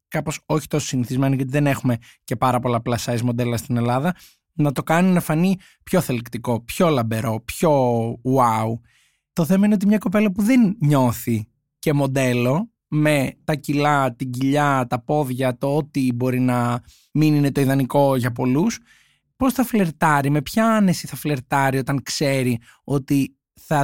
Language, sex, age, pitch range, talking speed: Greek, male, 20-39, 125-155 Hz, 165 wpm